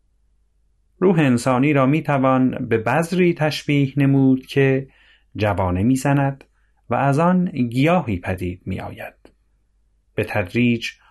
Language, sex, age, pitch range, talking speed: Persian, male, 30-49, 95-130 Hz, 120 wpm